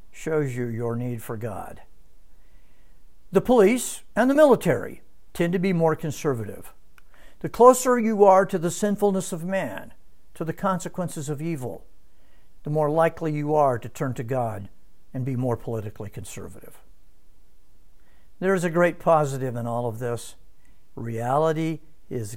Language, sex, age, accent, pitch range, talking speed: English, male, 60-79, American, 110-185 Hz, 145 wpm